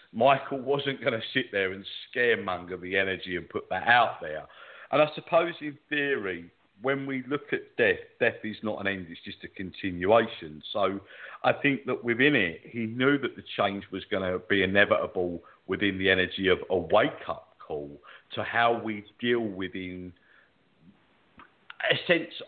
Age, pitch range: 50-69, 95-125 Hz